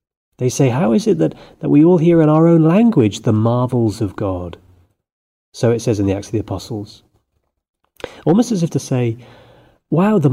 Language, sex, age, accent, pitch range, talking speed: English, male, 30-49, British, 105-145 Hz, 200 wpm